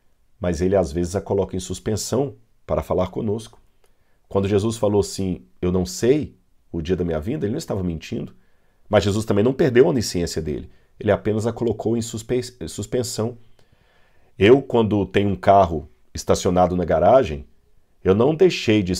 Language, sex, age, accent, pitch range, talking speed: Portuguese, male, 40-59, Brazilian, 90-115 Hz, 165 wpm